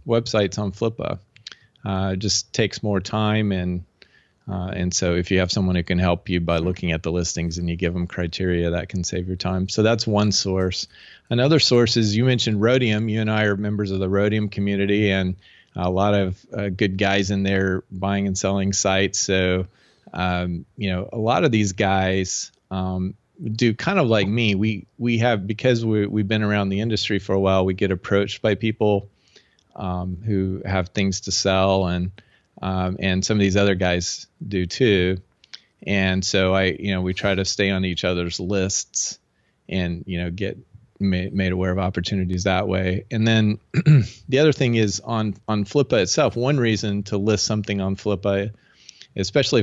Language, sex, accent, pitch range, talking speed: English, male, American, 95-110 Hz, 190 wpm